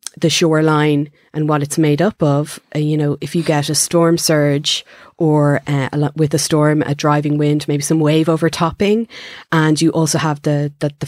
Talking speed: 200 wpm